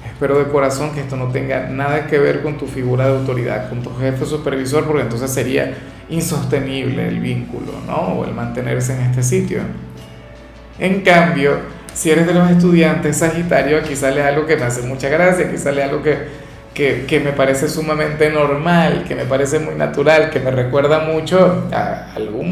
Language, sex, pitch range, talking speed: Spanish, male, 130-155 Hz, 185 wpm